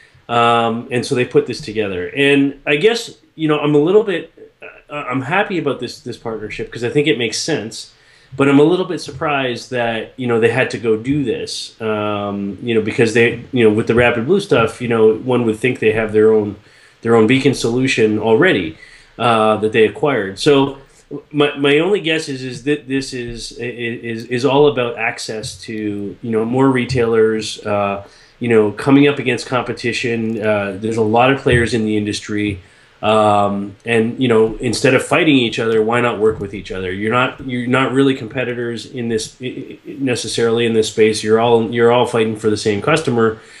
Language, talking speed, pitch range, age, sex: English, 200 wpm, 110-130 Hz, 30-49, male